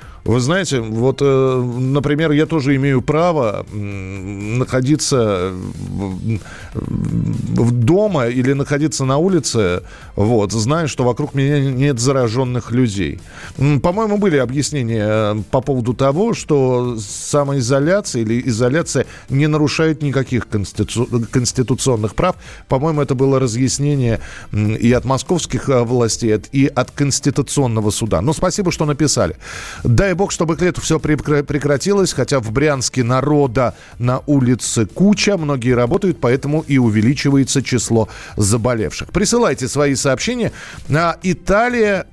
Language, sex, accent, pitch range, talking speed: Russian, male, native, 120-155 Hz, 115 wpm